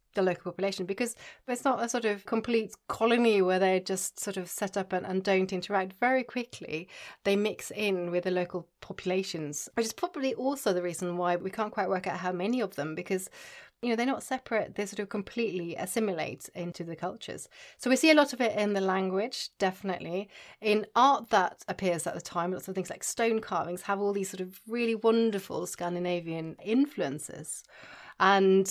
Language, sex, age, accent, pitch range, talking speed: English, female, 30-49, British, 175-220 Hz, 200 wpm